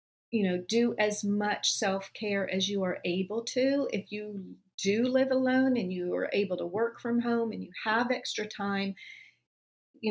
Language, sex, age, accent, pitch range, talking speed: English, female, 40-59, American, 195-225 Hz, 180 wpm